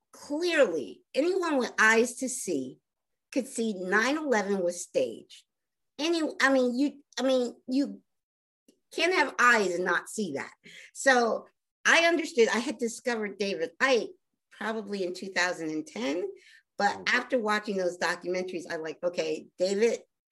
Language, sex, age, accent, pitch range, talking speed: English, female, 50-69, American, 200-260 Hz, 135 wpm